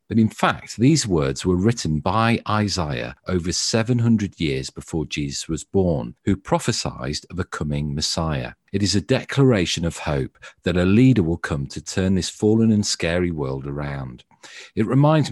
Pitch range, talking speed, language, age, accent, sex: 80-105 Hz, 170 wpm, English, 40-59, British, male